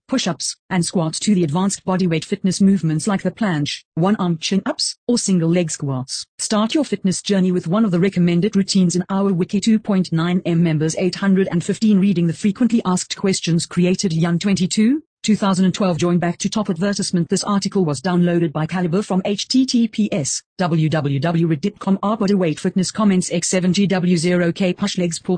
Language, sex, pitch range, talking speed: English, female, 175-200 Hz, 150 wpm